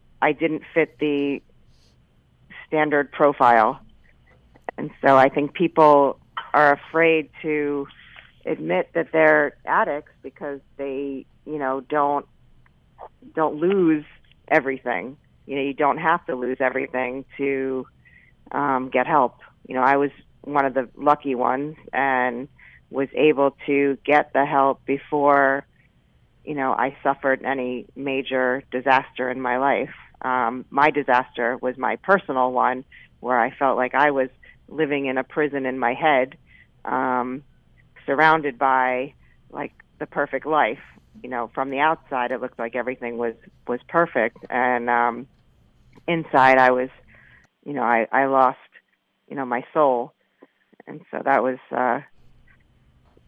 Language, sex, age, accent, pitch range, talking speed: English, female, 40-59, American, 125-145 Hz, 140 wpm